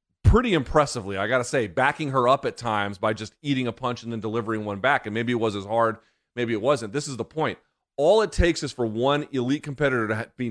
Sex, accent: male, American